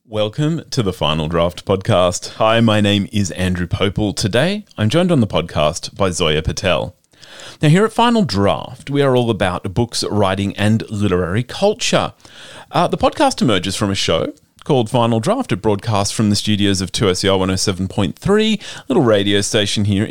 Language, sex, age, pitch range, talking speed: English, male, 30-49, 100-150 Hz, 175 wpm